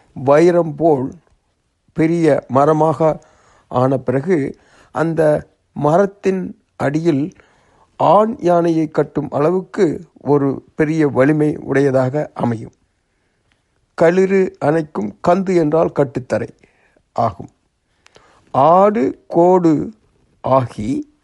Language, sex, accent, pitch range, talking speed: Tamil, male, native, 125-165 Hz, 75 wpm